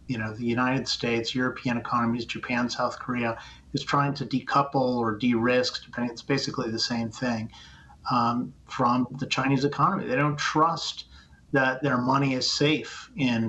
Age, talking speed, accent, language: 40-59, 165 wpm, American, English